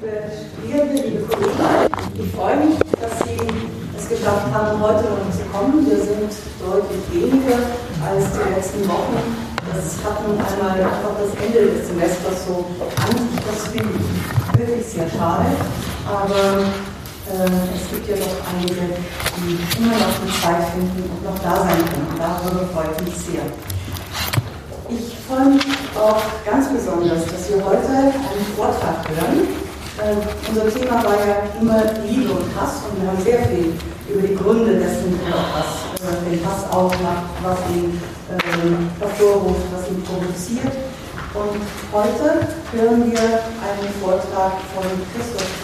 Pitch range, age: 180-215 Hz, 40-59